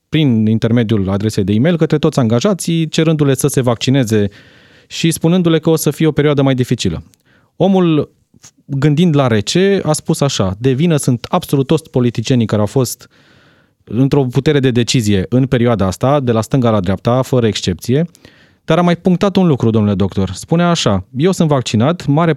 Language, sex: Romanian, male